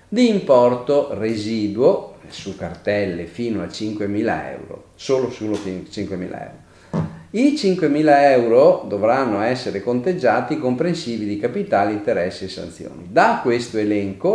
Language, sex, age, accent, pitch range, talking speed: Italian, male, 40-59, native, 100-145 Hz, 115 wpm